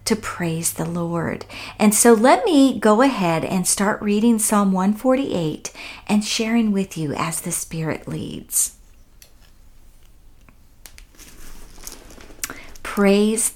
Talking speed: 105 wpm